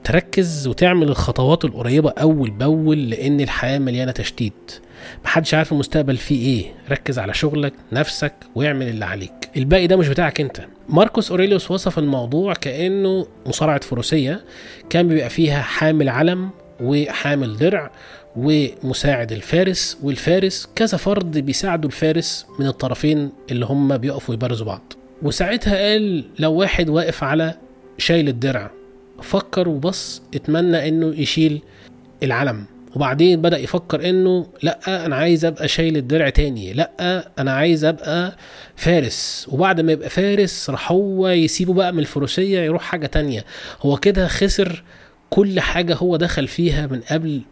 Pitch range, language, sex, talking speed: 135-175 Hz, Arabic, male, 135 wpm